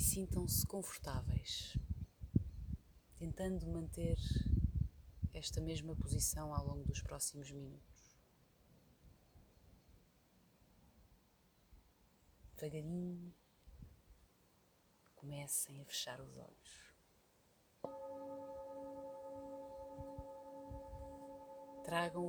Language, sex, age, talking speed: Portuguese, female, 30-49, 55 wpm